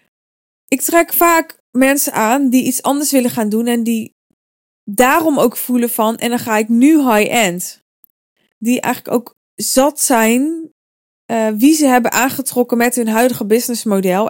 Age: 20-39